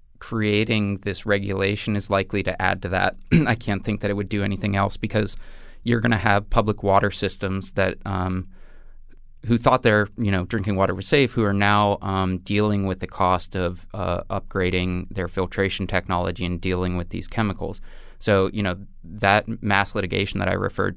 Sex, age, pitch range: male, 20-39, 90-105 Hz